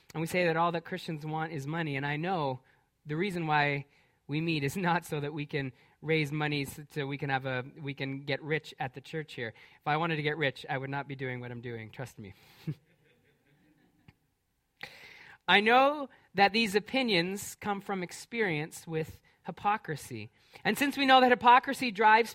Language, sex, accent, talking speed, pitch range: English, male, American, 195 wpm, 155-225 Hz